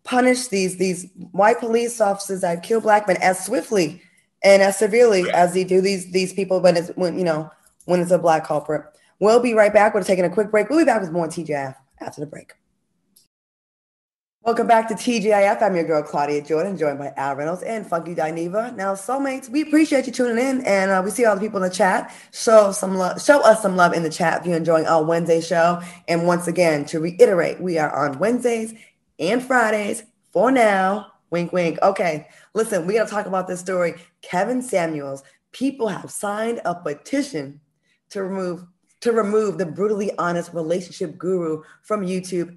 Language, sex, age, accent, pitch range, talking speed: English, female, 20-39, American, 170-220 Hz, 195 wpm